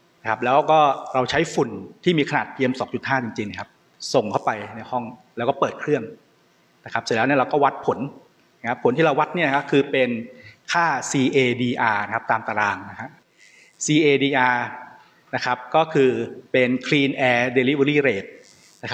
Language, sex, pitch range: Thai, male, 120-145 Hz